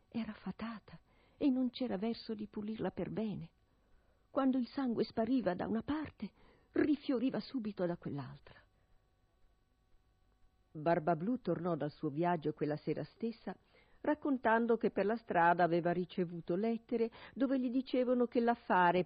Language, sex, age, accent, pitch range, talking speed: Italian, female, 50-69, native, 155-230 Hz, 135 wpm